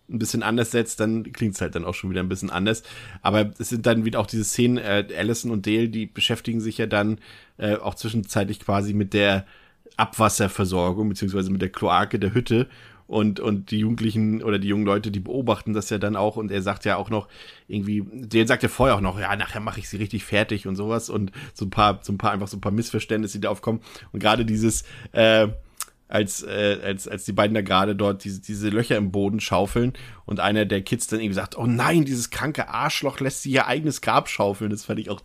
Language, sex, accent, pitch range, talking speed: German, male, German, 100-115 Hz, 230 wpm